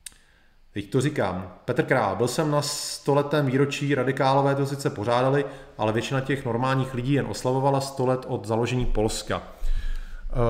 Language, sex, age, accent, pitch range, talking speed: Czech, male, 30-49, native, 120-150 Hz, 155 wpm